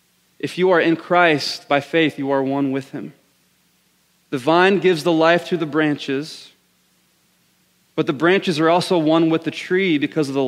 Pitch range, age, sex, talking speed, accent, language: 145-175 Hz, 30-49, male, 185 wpm, American, English